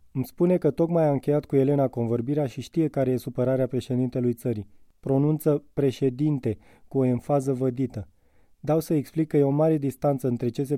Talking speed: 180 wpm